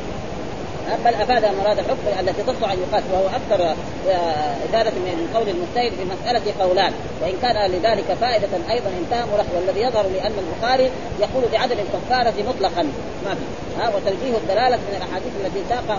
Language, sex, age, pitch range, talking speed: Arabic, female, 30-49, 205-255 Hz, 145 wpm